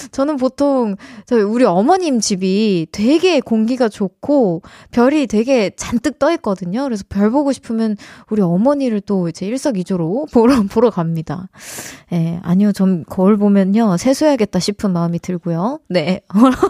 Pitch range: 200-285 Hz